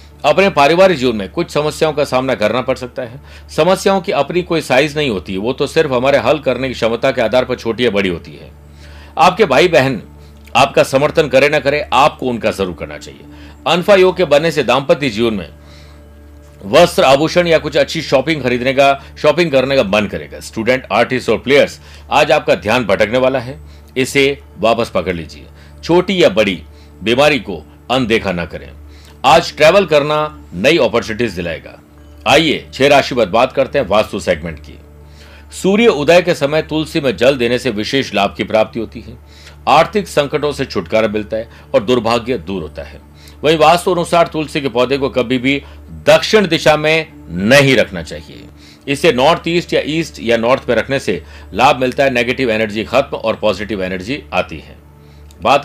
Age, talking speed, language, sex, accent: 50-69, 180 wpm, Hindi, male, native